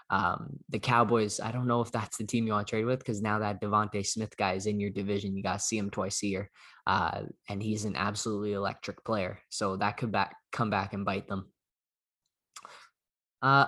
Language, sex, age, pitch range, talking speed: English, male, 10-29, 105-125 Hz, 220 wpm